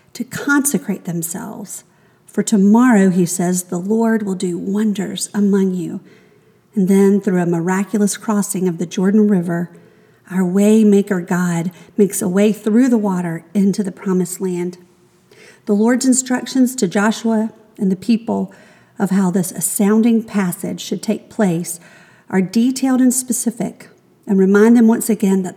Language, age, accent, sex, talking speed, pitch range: English, 50-69, American, female, 150 wpm, 185-220 Hz